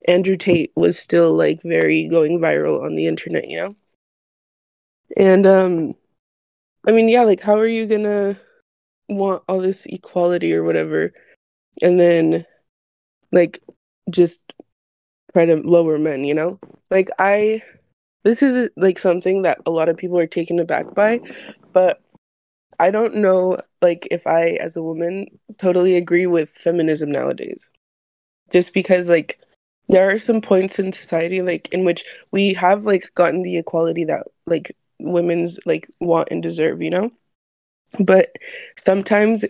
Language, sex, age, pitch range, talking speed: English, female, 20-39, 165-195 Hz, 150 wpm